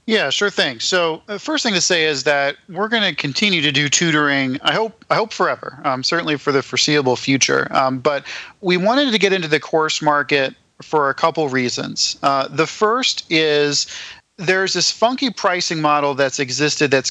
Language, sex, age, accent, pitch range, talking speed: English, male, 40-59, American, 145-180 Hz, 195 wpm